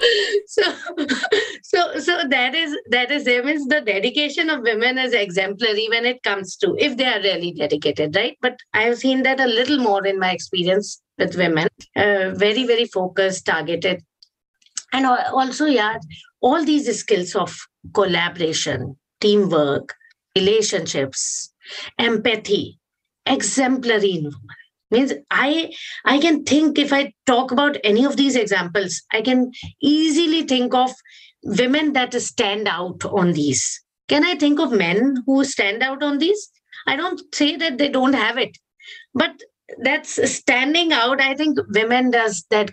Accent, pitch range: Indian, 205-300 Hz